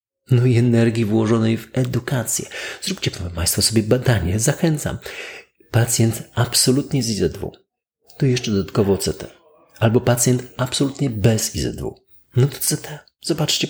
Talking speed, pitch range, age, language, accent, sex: 125 wpm, 95-135 Hz, 40-59, Polish, native, male